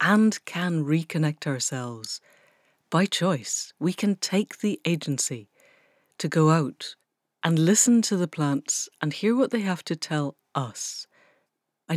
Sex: female